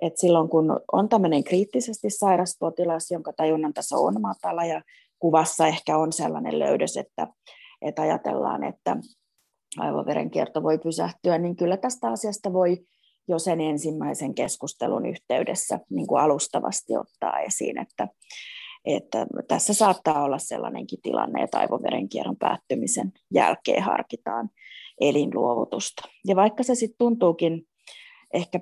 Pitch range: 165-225 Hz